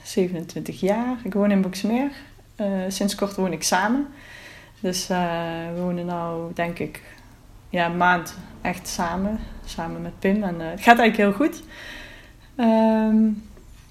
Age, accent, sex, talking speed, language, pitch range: 20-39, Dutch, female, 150 wpm, Dutch, 175-210 Hz